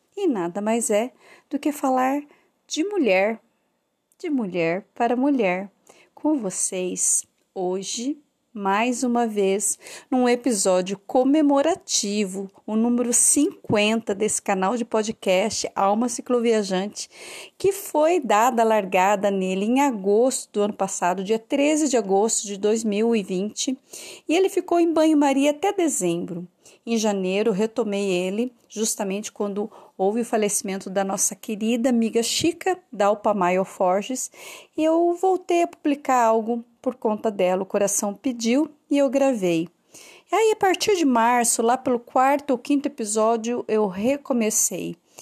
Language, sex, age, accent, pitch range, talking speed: Portuguese, female, 40-59, Brazilian, 205-280 Hz, 135 wpm